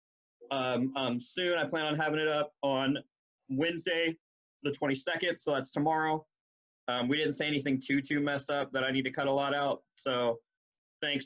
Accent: American